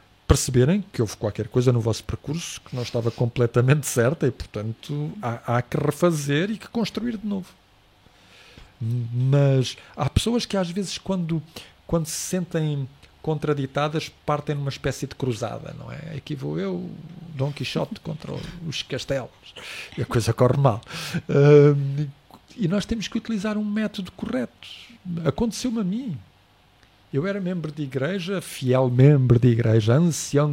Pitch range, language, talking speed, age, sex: 125-200 Hz, Portuguese, 150 wpm, 50-69, male